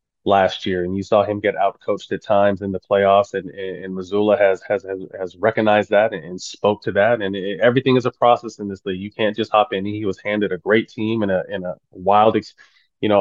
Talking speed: 255 wpm